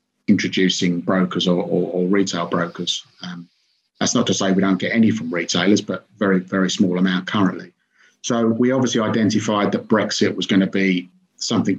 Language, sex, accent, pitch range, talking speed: English, male, British, 95-105 Hz, 180 wpm